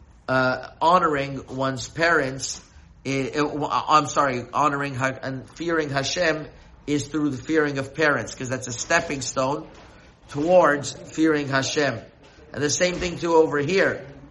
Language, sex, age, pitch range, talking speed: English, male, 50-69, 135-165 Hz, 140 wpm